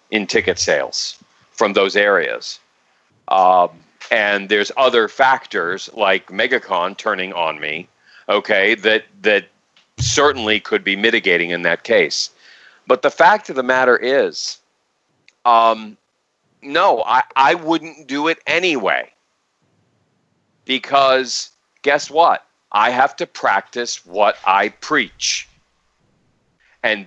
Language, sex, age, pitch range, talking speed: English, male, 40-59, 105-135 Hz, 115 wpm